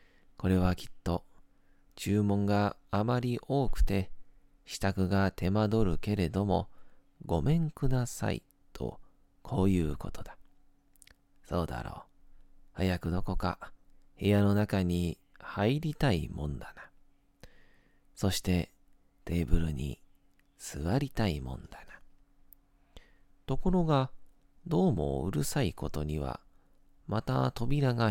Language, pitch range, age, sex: Japanese, 85-110 Hz, 40-59, male